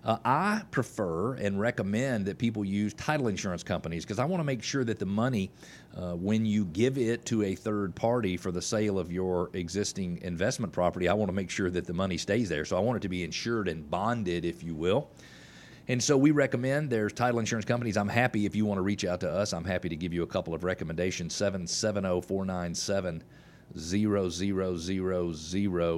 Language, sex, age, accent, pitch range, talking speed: English, male, 40-59, American, 90-115 Hz, 215 wpm